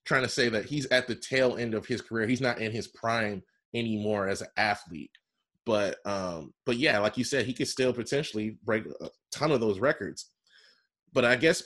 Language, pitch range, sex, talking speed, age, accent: English, 105-130 Hz, male, 210 wpm, 20-39, American